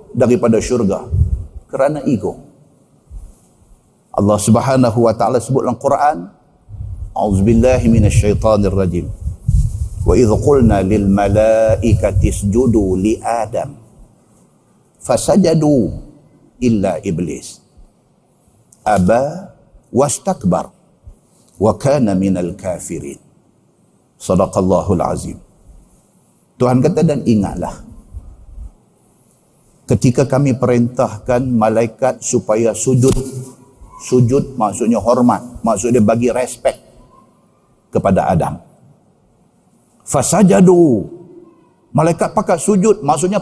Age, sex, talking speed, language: 50-69, male, 80 wpm, Malay